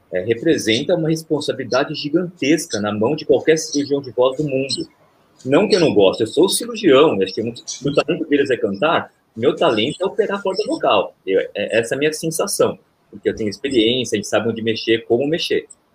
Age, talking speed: 30-49, 205 wpm